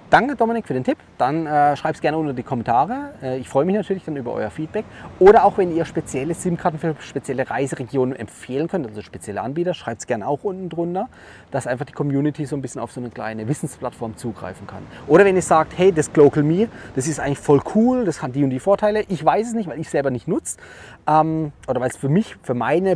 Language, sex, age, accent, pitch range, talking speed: German, male, 30-49, German, 135-175 Hz, 240 wpm